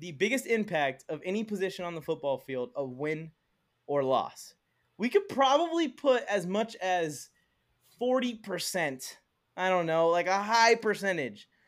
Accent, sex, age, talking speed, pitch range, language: American, male, 20-39, 150 wpm, 165-220 Hz, English